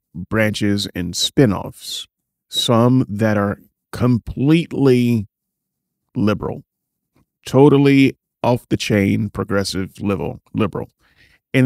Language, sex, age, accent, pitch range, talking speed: English, male, 40-59, American, 100-125 Hz, 85 wpm